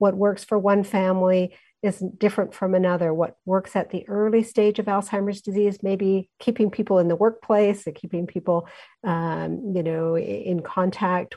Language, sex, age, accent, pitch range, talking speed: English, female, 50-69, American, 175-210 Hz, 170 wpm